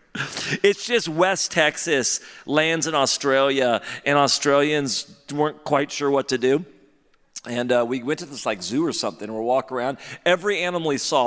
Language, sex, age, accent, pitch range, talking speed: English, male, 40-59, American, 105-150 Hz, 175 wpm